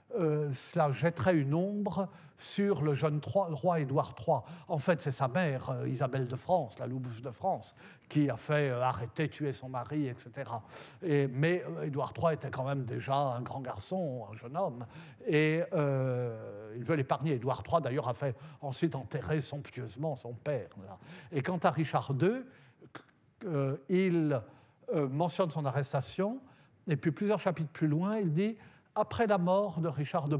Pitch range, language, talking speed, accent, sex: 130-170 Hz, French, 170 wpm, French, male